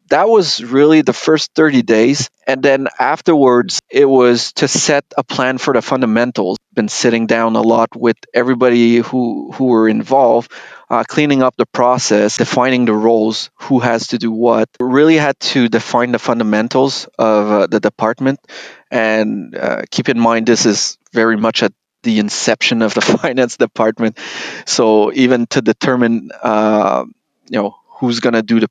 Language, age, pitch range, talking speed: English, 30-49, 110-130 Hz, 170 wpm